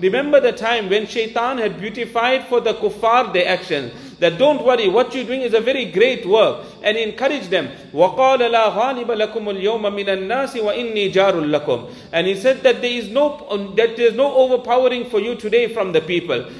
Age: 40-59